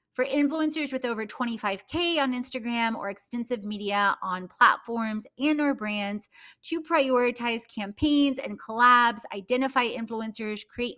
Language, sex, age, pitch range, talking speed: English, female, 30-49, 200-255 Hz, 125 wpm